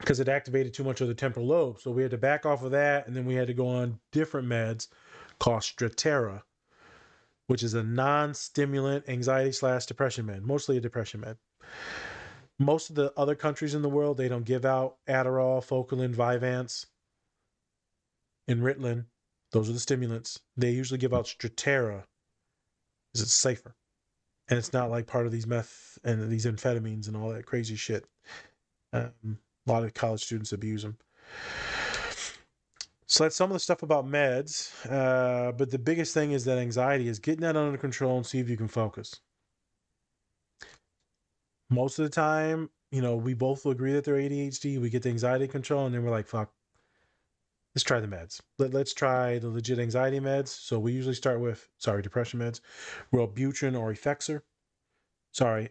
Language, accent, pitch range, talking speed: English, American, 115-135 Hz, 180 wpm